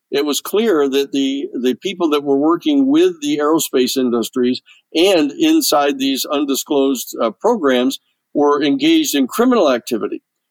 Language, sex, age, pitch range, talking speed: English, male, 50-69, 135-200 Hz, 145 wpm